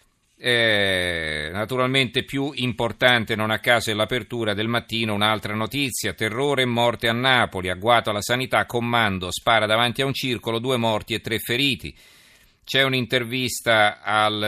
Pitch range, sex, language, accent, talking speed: 105-125 Hz, male, Italian, native, 145 wpm